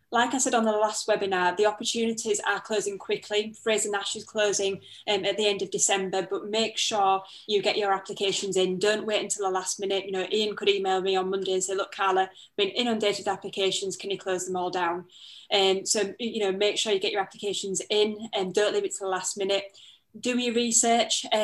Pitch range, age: 195-220 Hz, 20-39